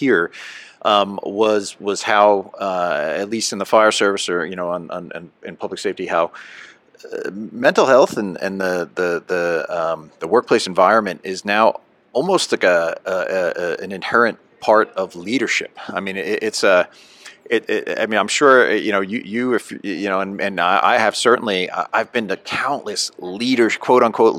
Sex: male